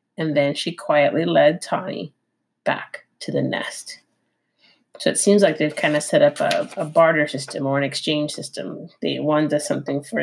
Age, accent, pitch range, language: 30-49, American, 150-225 Hz, English